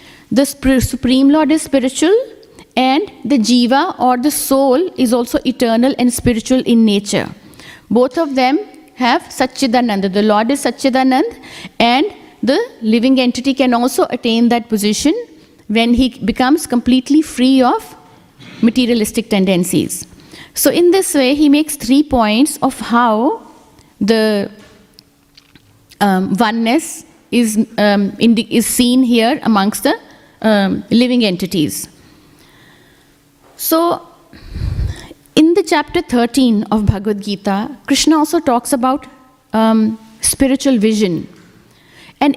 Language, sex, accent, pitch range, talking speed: English, female, Indian, 230-285 Hz, 120 wpm